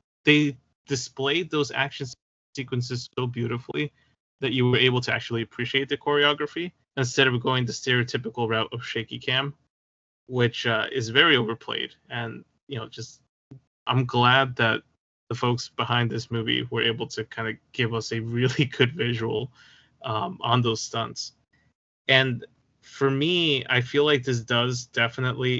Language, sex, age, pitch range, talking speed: English, male, 20-39, 120-140 Hz, 155 wpm